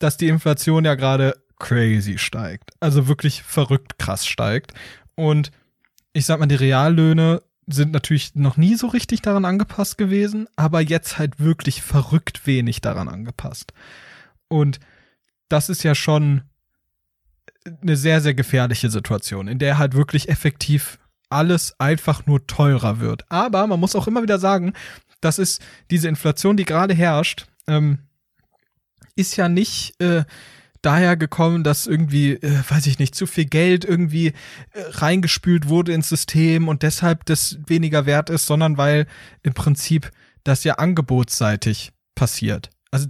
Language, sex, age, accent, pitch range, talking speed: German, male, 20-39, German, 140-165 Hz, 150 wpm